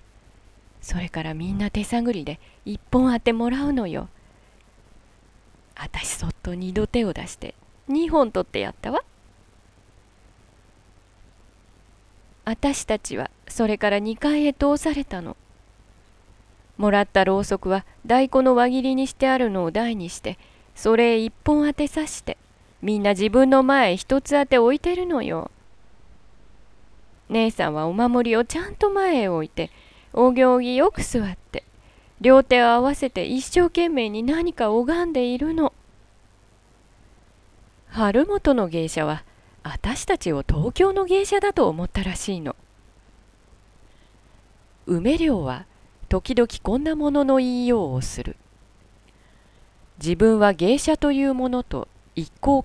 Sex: female